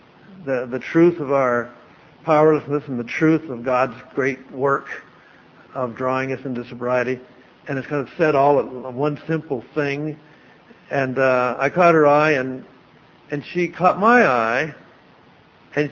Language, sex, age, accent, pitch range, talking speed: English, male, 60-79, American, 130-175 Hz, 155 wpm